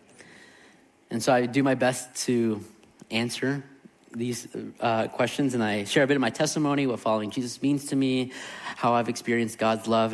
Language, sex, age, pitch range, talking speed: English, male, 30-49, 115-145 Hz, 180 wpm